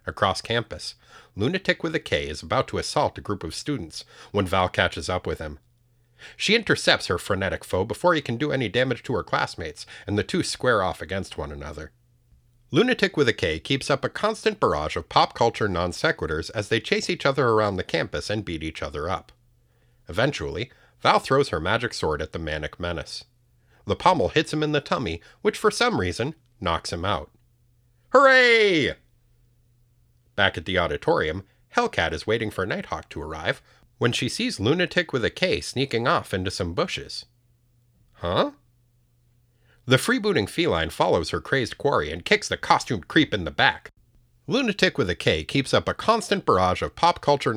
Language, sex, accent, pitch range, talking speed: English, male, American, 95-145 Hz, 180 wpm